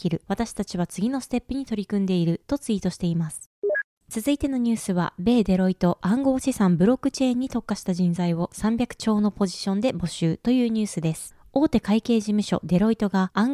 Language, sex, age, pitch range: Japanese, female, 20-39, 180-245 Hz